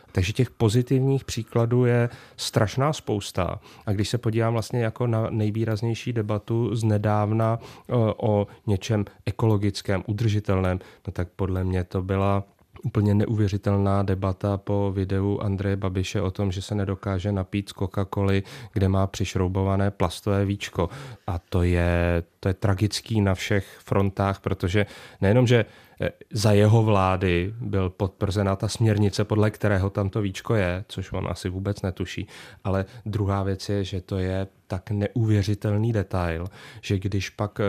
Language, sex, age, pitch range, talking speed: Czech, male, 30-49, 95-110 Hz, 145 wpm